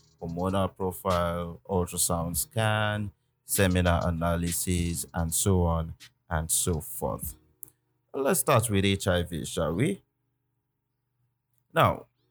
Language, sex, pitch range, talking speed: English, male, 90-115 Hz, 95 wpm